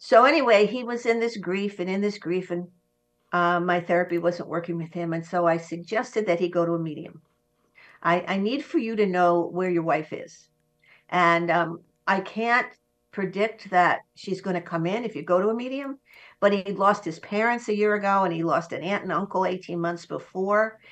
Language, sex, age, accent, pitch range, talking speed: English, female, 60-79, American, 170-205 Hz, 215 wpm